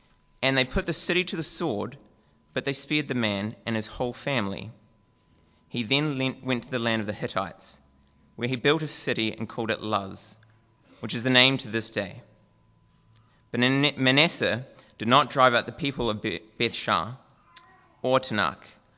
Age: 20-39